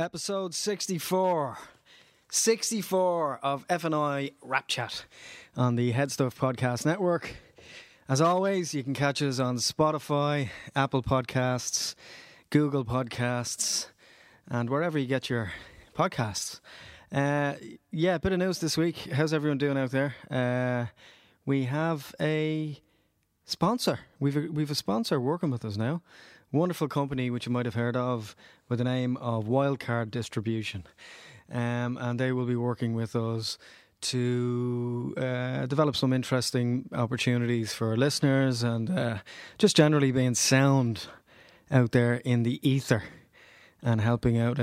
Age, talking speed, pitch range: 20-39, 135 wpm, 120-145 Hz